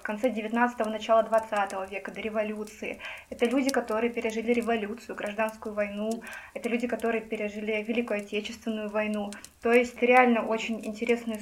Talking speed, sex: 140 wpm, female